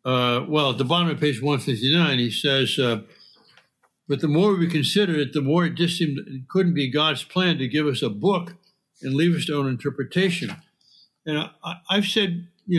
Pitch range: 135-180 Hz